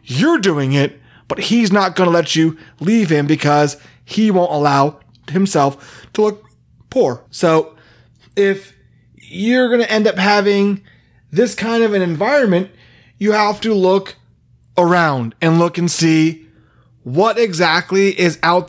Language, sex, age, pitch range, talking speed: English, male, 30-49, 160-215 Hz, 150 wpm